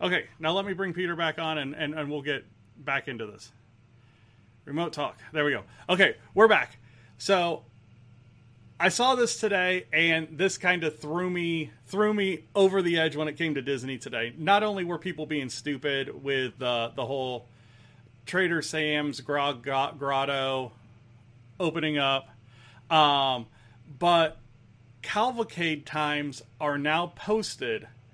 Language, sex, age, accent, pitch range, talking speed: English, male, 30-49, American, 120-185 Hz, 145 wpm